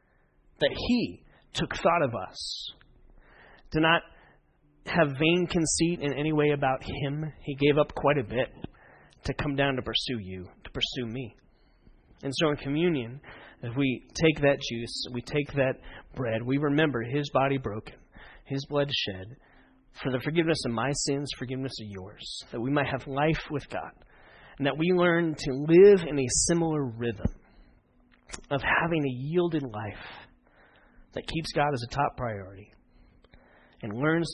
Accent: American